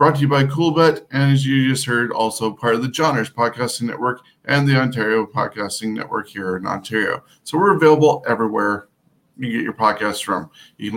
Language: English